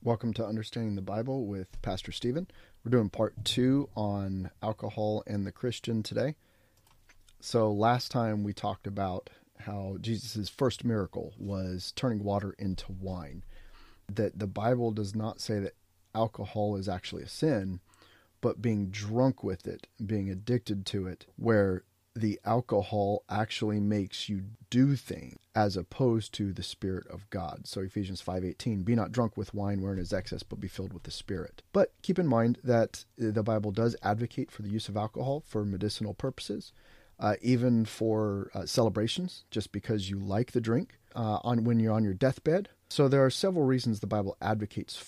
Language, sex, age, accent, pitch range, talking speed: English, male, 30-49, American, 100-115 Hz, 170 wpm